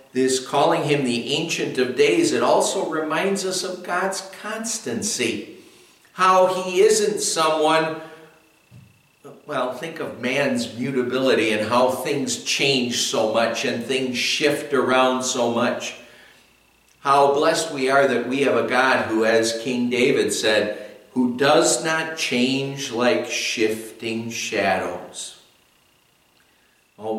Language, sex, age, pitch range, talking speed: English, male, 50-69, 105-145 Hz, 125 wpm